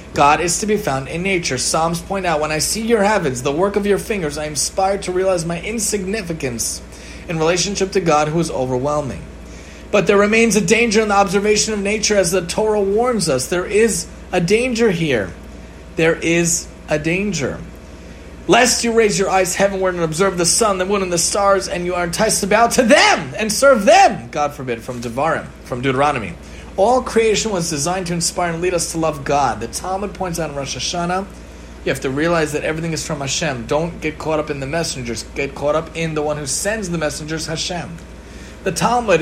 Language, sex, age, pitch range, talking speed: English, male, 30-49, 150-200 Hz, 210 wpm